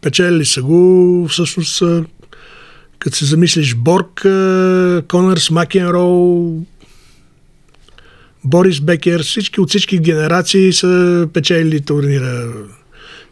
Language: Bulgarian